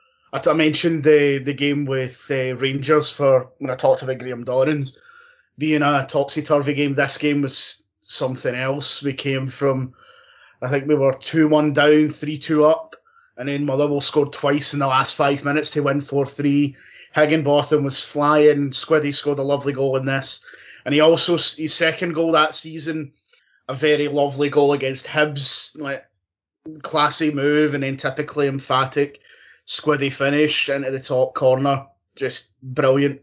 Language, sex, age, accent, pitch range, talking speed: English, male, 20-39, British, 140-155 Hz, 160 wpm